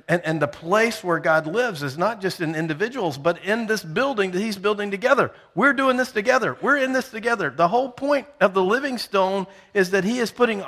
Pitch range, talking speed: 175-235 Hz, 225 wpm